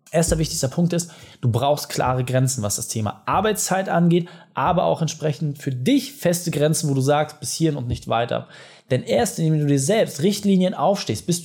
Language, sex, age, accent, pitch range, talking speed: German, male, 20-39, German, 135-175 Hz, 195 wpm